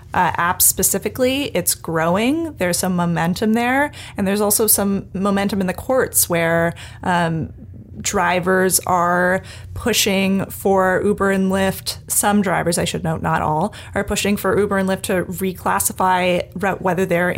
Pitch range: 170-205 Hz